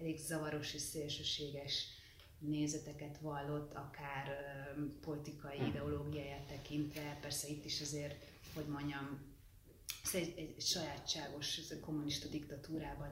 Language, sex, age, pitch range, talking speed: Hungarian, female, 30-49, 140-160 Hz, 115 wpm